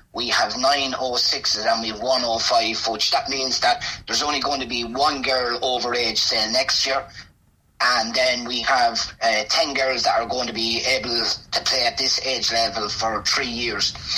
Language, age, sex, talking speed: English, 30-49, male, 190 wpm